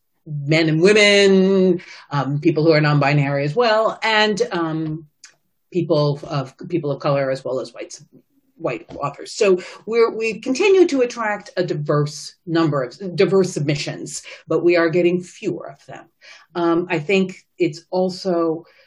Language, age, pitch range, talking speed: English, 40-59, 155-195 Hz, 150 wpm